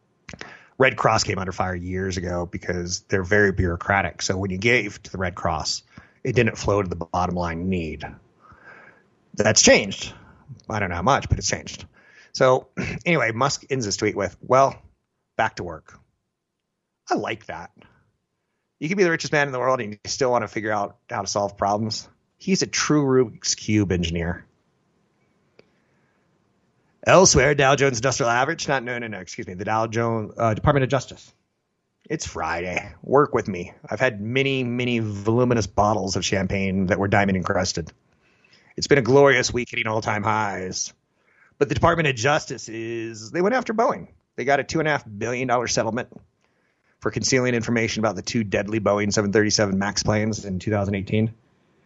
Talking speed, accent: 175 wpm, American